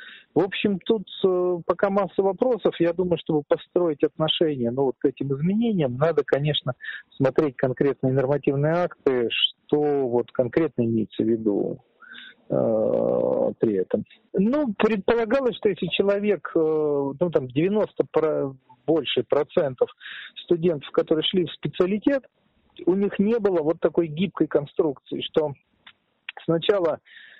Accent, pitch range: native, 140-215 Hz